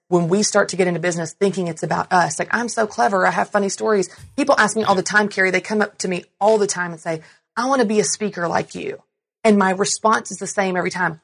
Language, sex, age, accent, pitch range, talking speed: English, female, 30-49, American, 165-200 Hz, 280 wpm